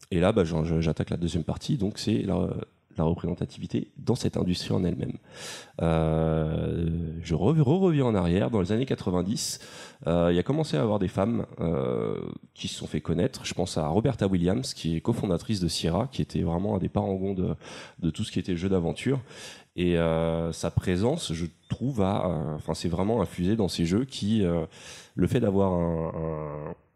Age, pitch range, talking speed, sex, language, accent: 30-49, 85-105 Hz, 195 wpm, male, French, French